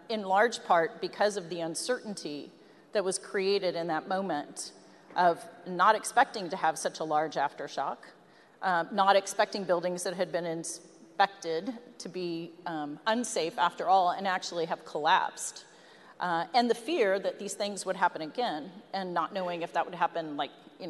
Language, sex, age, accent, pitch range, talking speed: English, female, 40-59, American, 175-220 Hz, 170 wpm